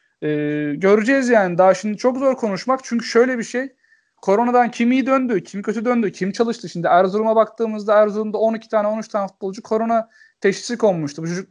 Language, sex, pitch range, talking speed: Turkish, male, 185-225 Hz, 180 wpm